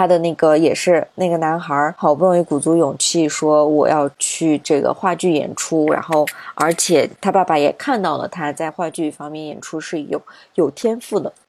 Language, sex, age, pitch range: Chinese, female, 20-39, 150-195 Hz